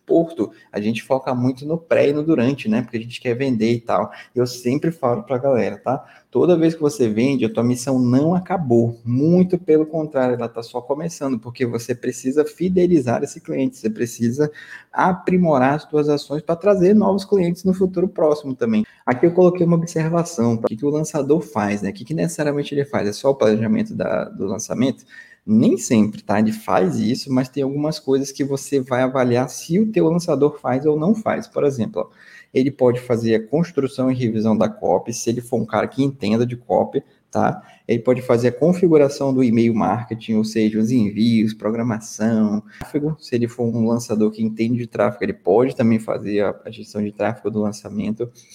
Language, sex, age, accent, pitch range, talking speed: Portuguese, male, 20-39, Brazilian, 115-150 Hz, 195 wpm